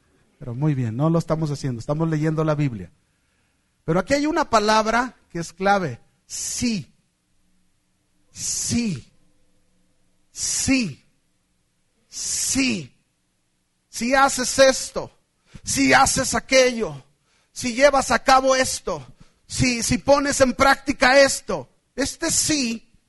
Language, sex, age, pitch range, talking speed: Spanish, male, 40-59, 190-280 Hz, 110 wpm